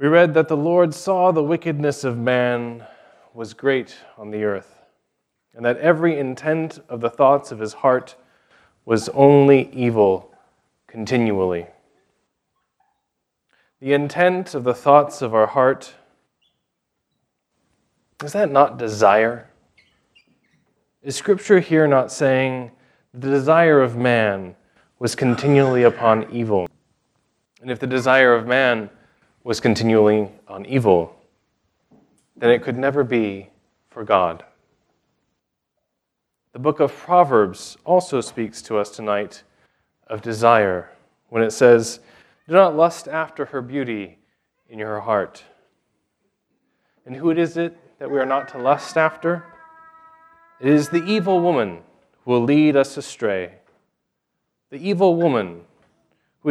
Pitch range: 115-155 Hz